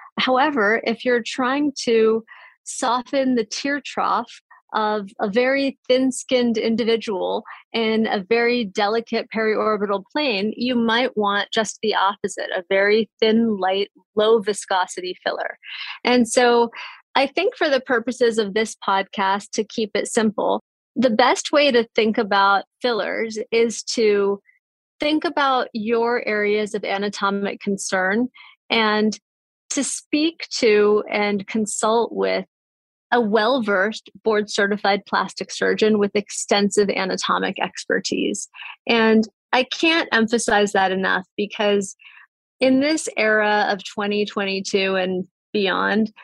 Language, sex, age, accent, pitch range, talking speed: English, female, 30-49, American, 205-245 Hz, 120 wpm